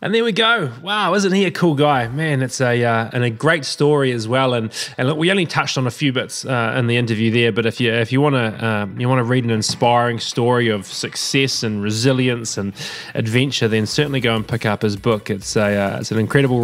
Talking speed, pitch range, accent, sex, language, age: 245 wpm, 115-145 Hz, Australian, male, English, 20-39